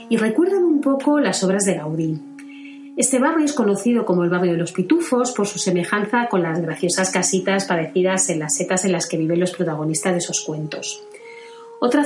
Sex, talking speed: female, 195 wpm